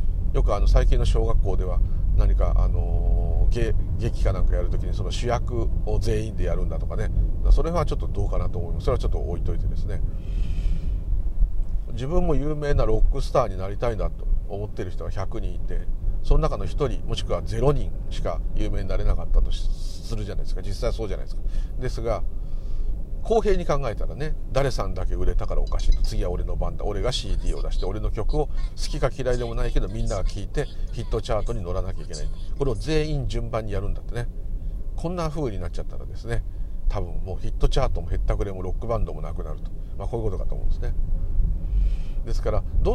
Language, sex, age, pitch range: Japanese, male, 40-59, 85-110 Hz